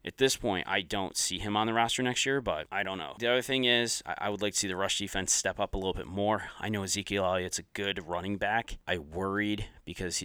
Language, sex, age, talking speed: English, male, 30-49, 265 wpm